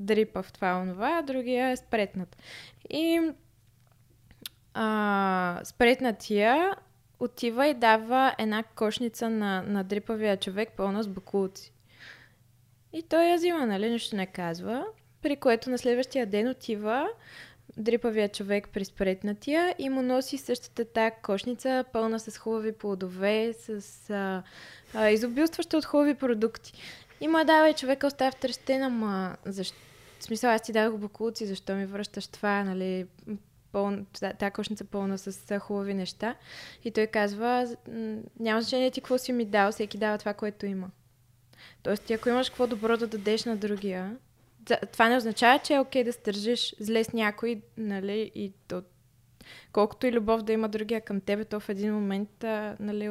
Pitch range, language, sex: 200-240 Hz, Bulgarian, female